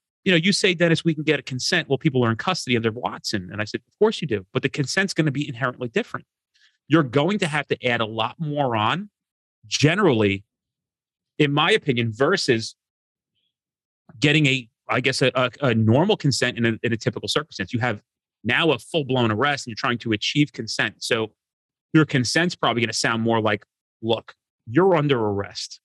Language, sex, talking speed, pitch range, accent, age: English, male, 205 wpm, 115-150 Hz, American, 30-49